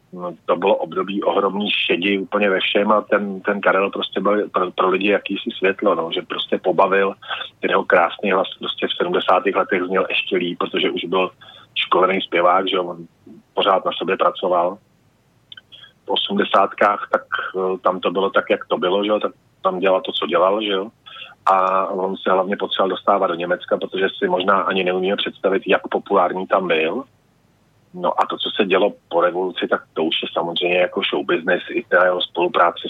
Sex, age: male, 30-49